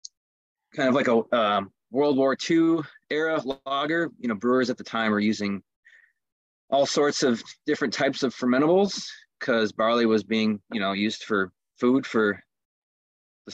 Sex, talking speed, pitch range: male, 160 wpm, 100-125 Hz